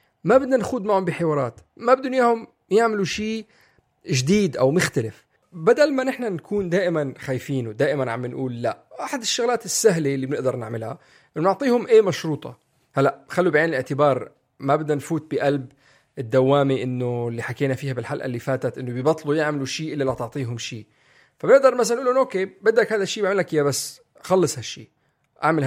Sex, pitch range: male, 135-200 Hz